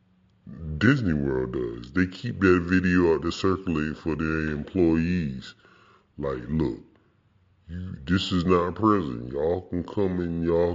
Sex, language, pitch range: female, English, 80-100 Hz